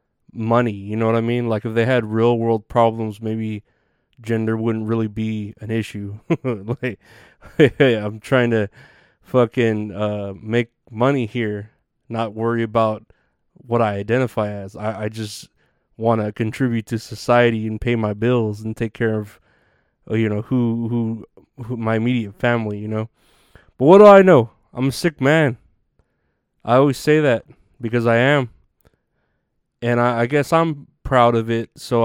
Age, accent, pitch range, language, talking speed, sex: 20-39, American, 110-125 Hz, English, 165 wpm, male